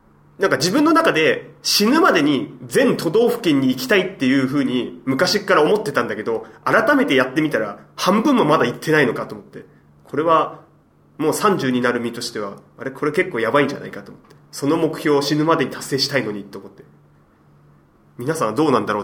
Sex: male